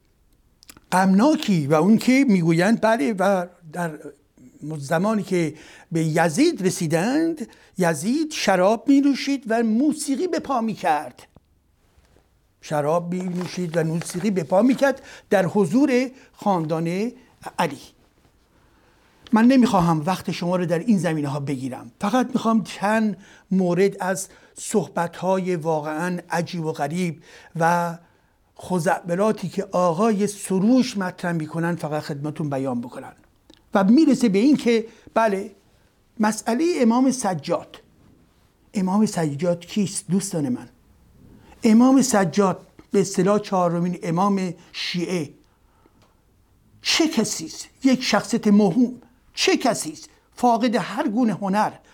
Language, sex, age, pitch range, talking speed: Persian, male, 60-79, 170-230 Hz, 110 wpm